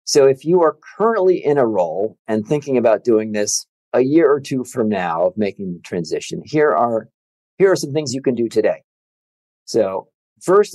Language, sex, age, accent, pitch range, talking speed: English, male, 50-69, American, 110-155 Hz, 190 wpm